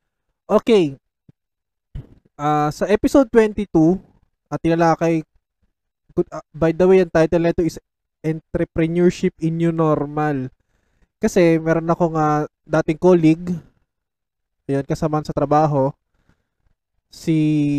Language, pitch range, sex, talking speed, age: Filipino, 145-180 Hz, male, 100 wpm, 20-39